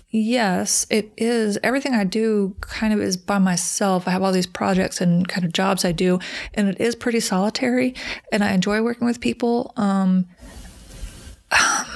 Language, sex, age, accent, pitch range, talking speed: English, female, 30-49, American, 180-210 Hz, 175 wpm